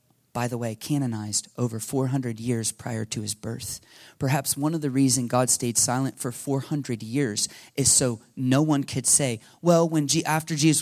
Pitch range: 120-145 Hz